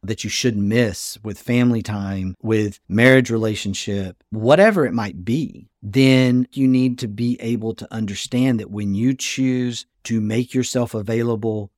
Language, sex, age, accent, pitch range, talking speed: English, male, 50-69, American, 100-125 Hz, 155 wpm